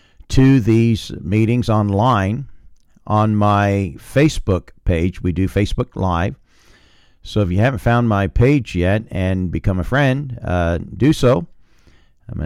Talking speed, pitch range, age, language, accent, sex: 135 wpm, 95-125 Hz, 50-69, English, American, male